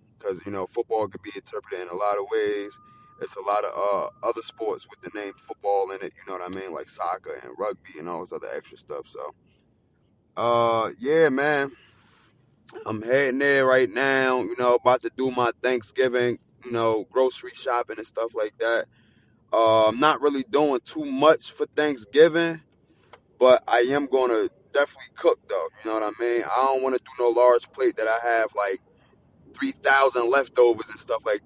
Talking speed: 200 wpm